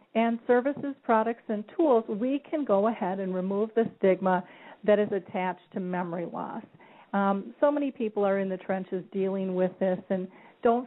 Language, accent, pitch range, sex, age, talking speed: English, American, 190-220 Hz, female, 40-59, 175 wpm